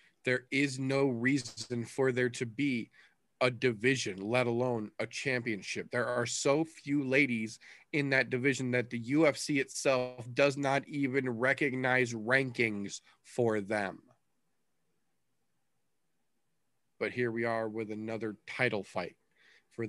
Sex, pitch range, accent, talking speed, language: male, 115-135 Hz, American, 125 wpm, English